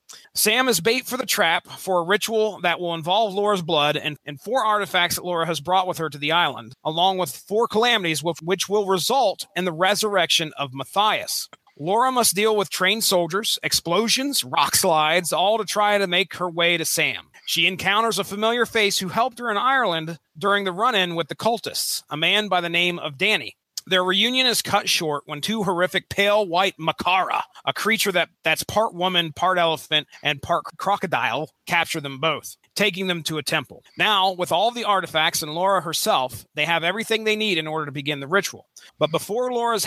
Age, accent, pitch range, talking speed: 30-49, American, 155-205 Hz, 200 wpm